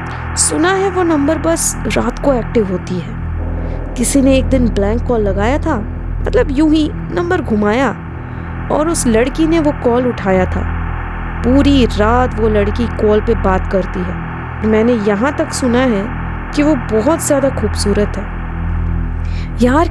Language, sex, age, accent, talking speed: Hindi, female, 20-39, native, 155 wpm